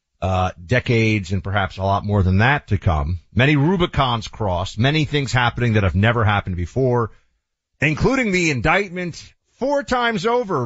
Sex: male